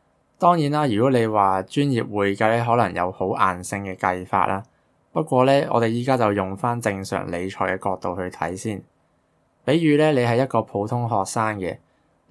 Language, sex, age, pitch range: Chinese, male, 20-39, 95-125 Hz